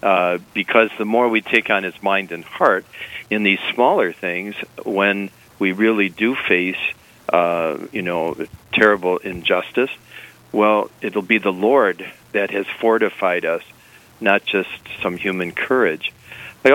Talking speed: 145 wpm